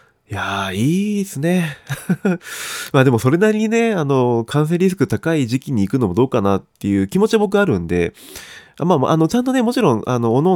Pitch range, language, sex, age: 100-140 Hz, Japanese, male, 20-39